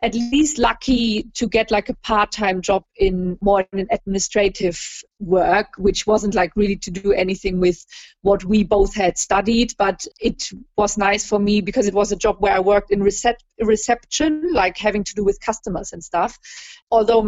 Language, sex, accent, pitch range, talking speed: English, female, German, 195-220 Hz, 180 wpm